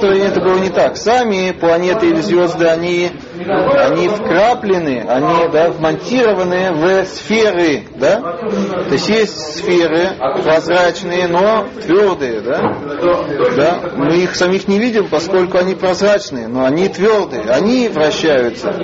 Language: Russian